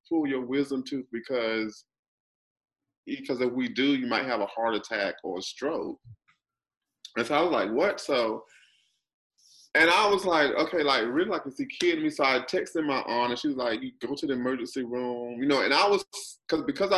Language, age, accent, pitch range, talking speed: English, 30-49, American, 115-145 Hz, 200 wpm